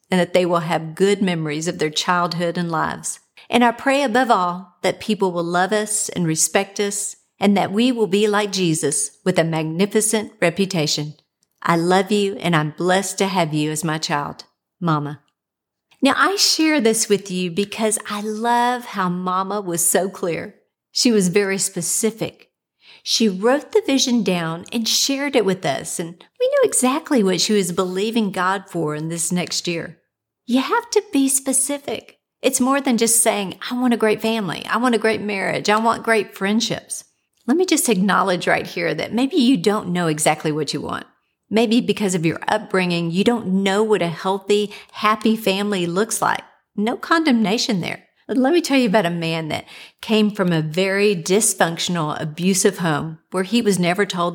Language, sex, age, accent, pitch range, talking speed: English, female, 50-69, American, 170-225 Hz, 185 wpm